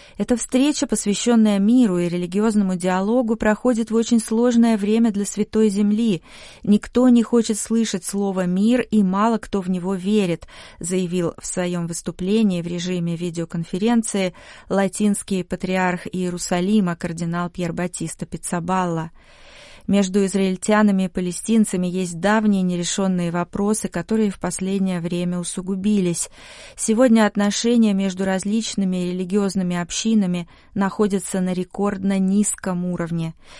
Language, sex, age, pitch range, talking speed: Russian, female, 30-49, 180-215 Hz, 115 wpm